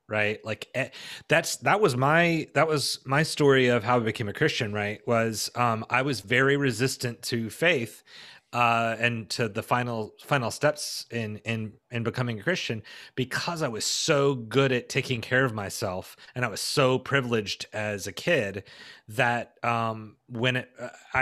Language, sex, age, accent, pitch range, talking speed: English, male, 30-49, American, 115-140 Hz, 175 wpm